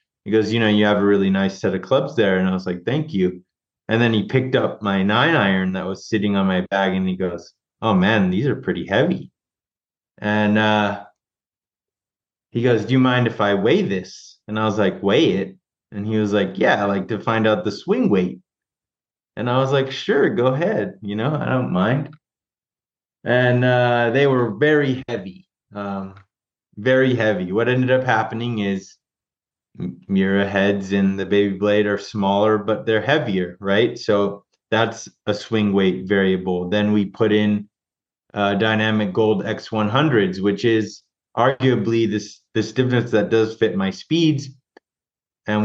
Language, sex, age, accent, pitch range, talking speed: English, male, 20-39, American, 100-120 Hz, 180 wpm